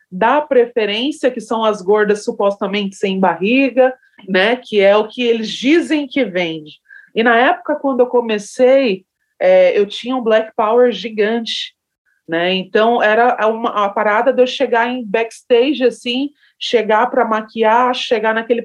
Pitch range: 220-275 Hz